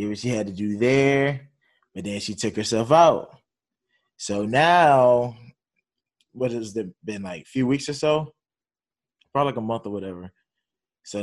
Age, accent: 20-39, American